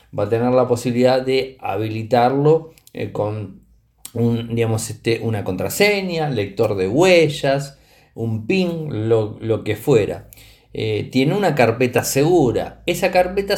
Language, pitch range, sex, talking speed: Spanish, 115-160 Hz, male, 120 wpm